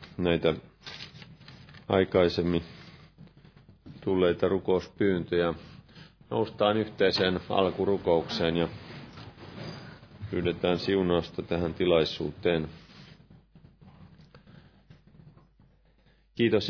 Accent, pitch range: native, 100-130 Hz